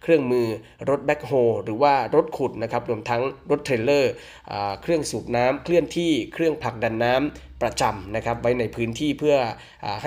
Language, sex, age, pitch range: Thai, male, 20-39, 115-145 Hz